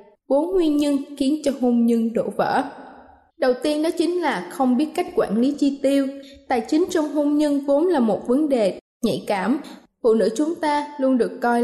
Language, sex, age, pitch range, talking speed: Vietnamese, female, 20-39, 225-290 Hz, 205 wpm